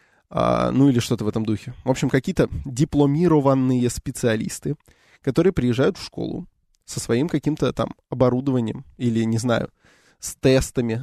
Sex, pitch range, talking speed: male, 120-155 Hz, 135 wpm